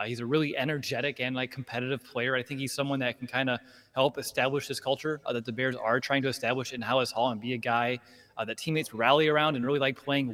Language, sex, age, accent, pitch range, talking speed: English, male, 20-39, American, 120-140 Hz, 260 wpm